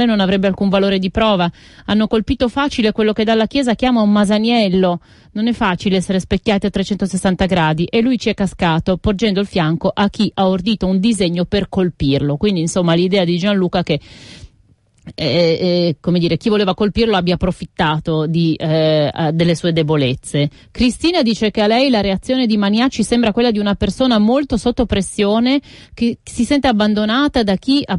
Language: Italian